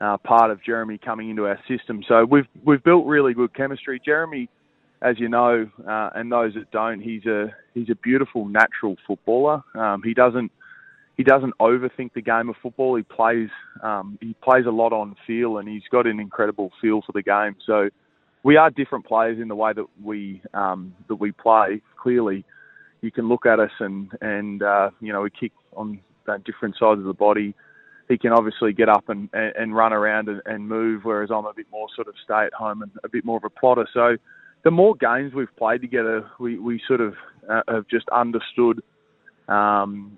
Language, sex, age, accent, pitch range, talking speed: English, male, 20-39, Australian, 110-120 Hz, 200 wpm